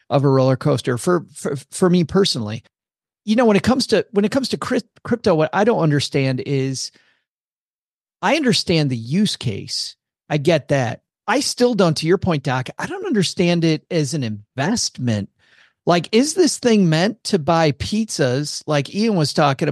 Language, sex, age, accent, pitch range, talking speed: English, male, 40-59, American, 140-185 Hz, 180 wpm